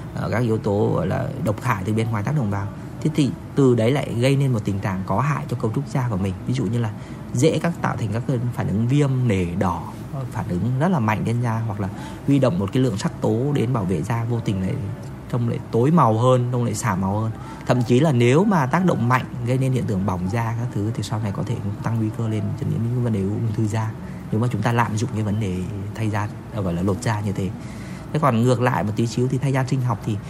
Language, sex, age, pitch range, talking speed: Vietnamese, male, 20-39, 105-135 Hz, 275 wpm